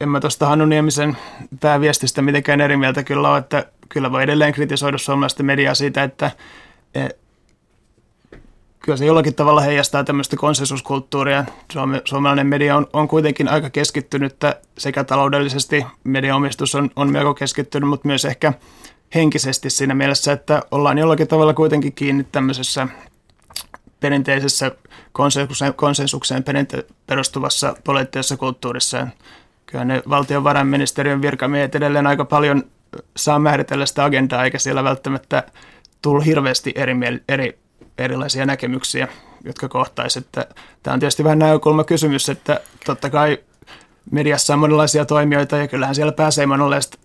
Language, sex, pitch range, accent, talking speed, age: Finnish, male, 135-150 Hz, native, 130 wpm, 30-49